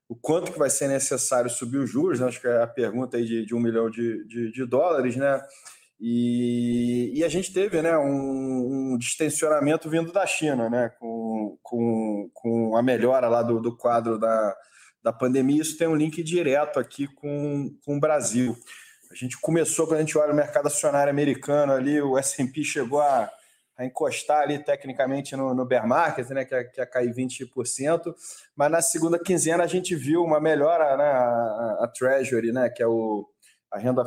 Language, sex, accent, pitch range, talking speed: Portuguese, male, Brazilian, 125-155 Hz, 195 wpm